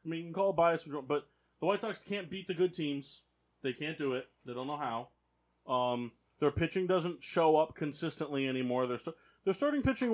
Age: 30-49